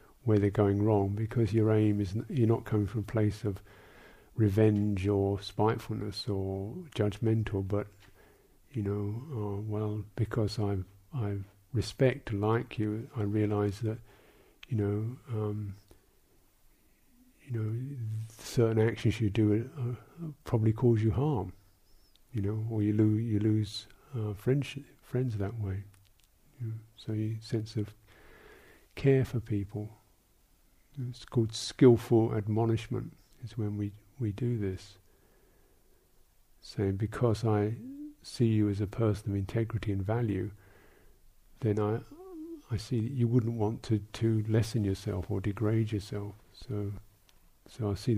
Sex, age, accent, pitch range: male, 50-69, British, 100-115 Hz